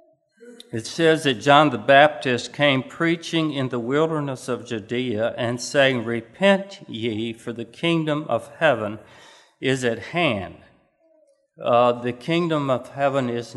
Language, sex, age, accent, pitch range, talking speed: English, male, 60-79, American, 120-150 Hz, 135 wpm